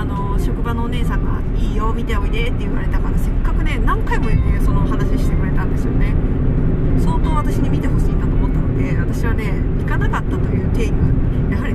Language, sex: Japanese, female